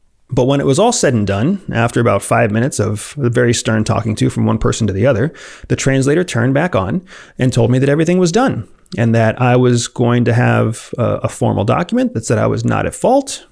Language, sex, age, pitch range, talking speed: English, male, 30-49, 115-140 Hz, 230 wpm